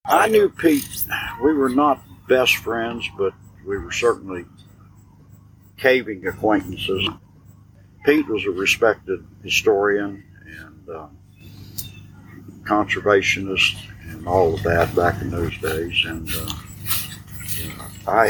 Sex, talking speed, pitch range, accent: male, 110 wpm, 95-105 Hz, American